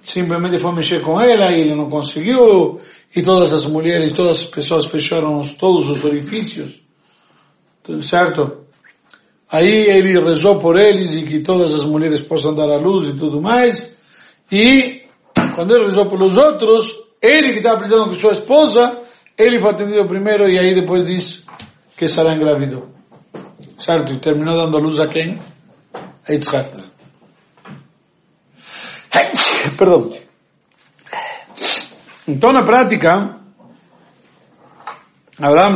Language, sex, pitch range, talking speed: Portuguese, male, 155-210 Hz, 135 wpm